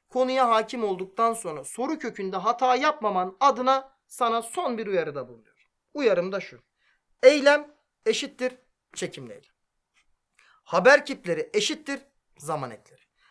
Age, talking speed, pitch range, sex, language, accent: 40-59, 120 wpm, 195-290 Hz, male, Turkish, native